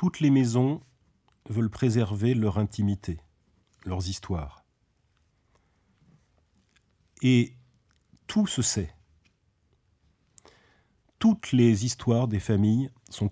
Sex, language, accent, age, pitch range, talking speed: male, Italian, French, 40-59, 95-125 Hz, 85 wpm